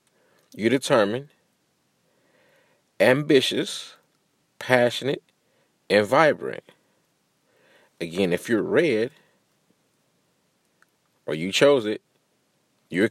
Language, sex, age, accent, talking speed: English, male, 40-59, American, 70 wpm